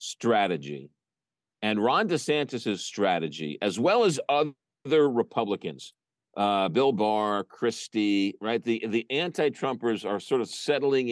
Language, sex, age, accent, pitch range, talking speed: English, male, 50-69, American, 105-160 Hz, 125 wpm